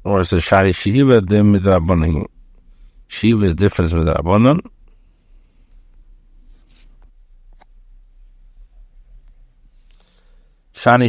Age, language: 60-79, English